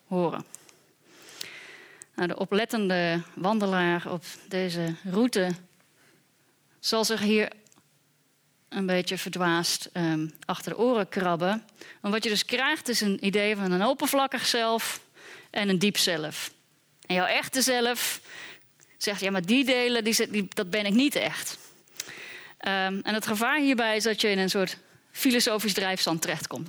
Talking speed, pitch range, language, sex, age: 135 wpm, 185-240 Hz, Dutch, female, 30-49